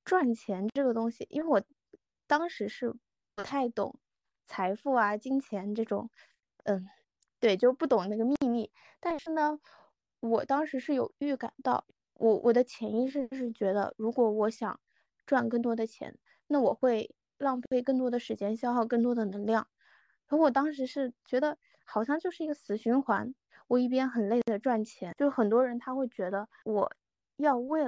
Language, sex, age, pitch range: Chinese, female, 20-39, 220-265 Hz